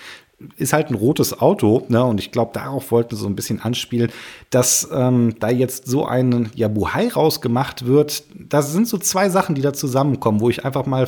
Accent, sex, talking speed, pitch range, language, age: German, male, 200 wpm, 115-145 Hz, German, 40-59